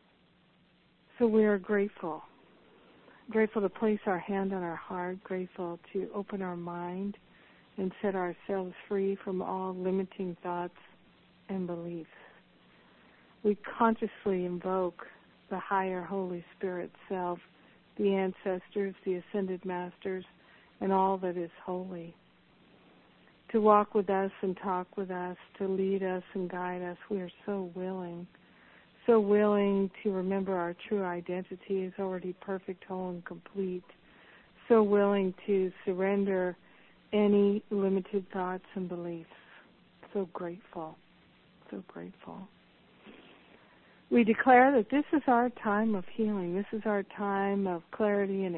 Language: English